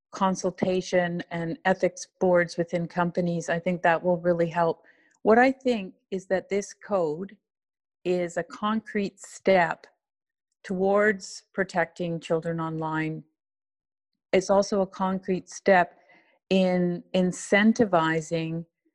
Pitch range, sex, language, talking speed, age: 170-195 Hz, female, English, 110 wpm, 50-69